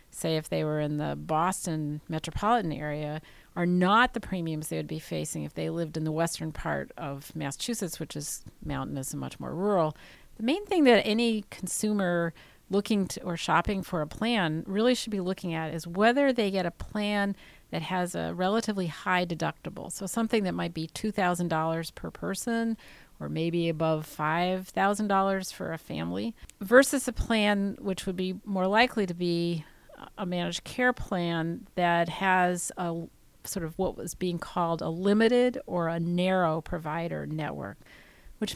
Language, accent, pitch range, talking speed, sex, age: English, American, 165-200 Hz, 170 wpm, female, 40-59